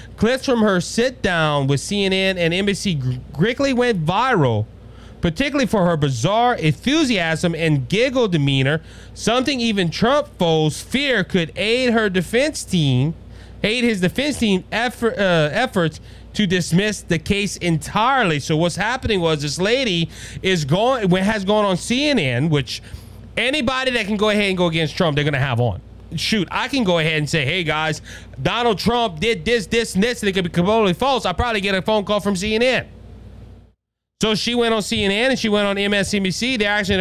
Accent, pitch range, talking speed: American, 160-220 Hz, 185 wpm